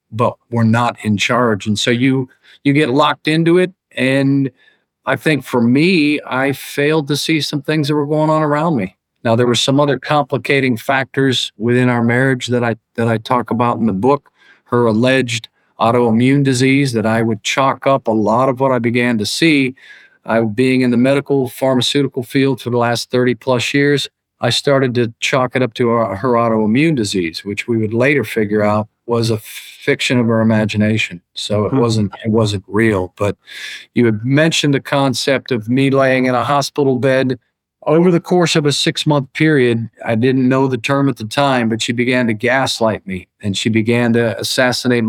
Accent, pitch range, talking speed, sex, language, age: American, 115-140 Hz, 195 wpm, male, English, 50-69